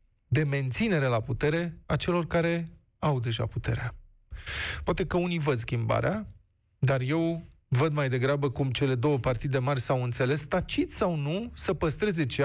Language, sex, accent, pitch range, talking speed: Romanian, male, native, 125-170 Hz, 160 wpm